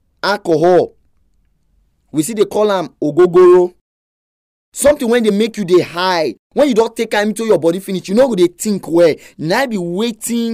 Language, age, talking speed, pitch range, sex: English, 30-49, 190 wpm, 150-240 Hz, male